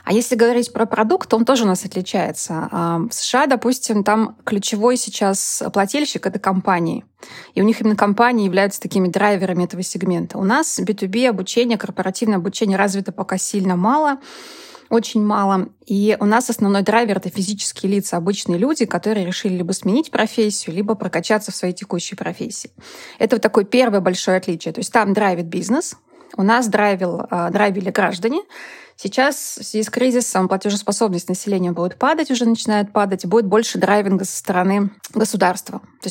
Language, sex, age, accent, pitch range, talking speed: Russian, female, 20-39, native, 190-230 Hz, 165 wpm